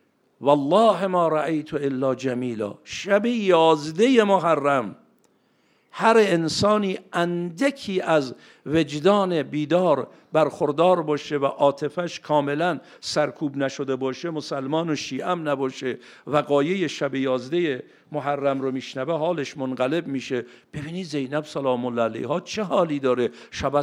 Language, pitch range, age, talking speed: Persian, 130-155 Hz, 50-69, 115 wpm